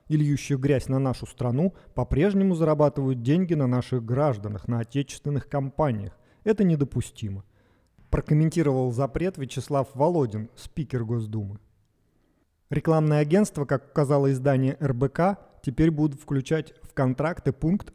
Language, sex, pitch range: Russian, male, 125-155 Hz